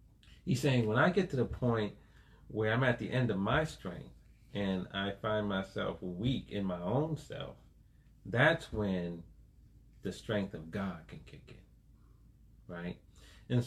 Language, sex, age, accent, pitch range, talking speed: English, male, 40-59, American, 100-130 Hz, 160 wpm